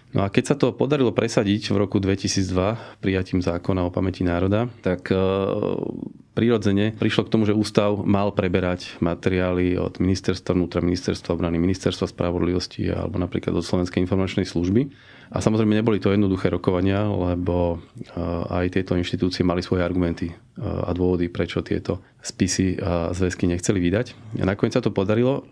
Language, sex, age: Slovak, male, 30-49